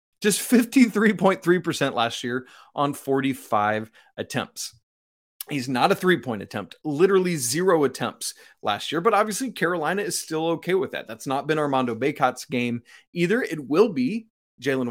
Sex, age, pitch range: male, 30-49, 130-195 Hz